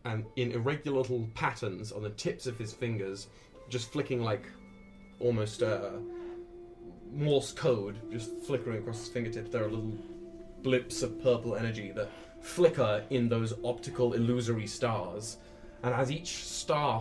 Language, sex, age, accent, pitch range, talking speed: English, male, 20-39, British, 105-130 Hz, 150 wpm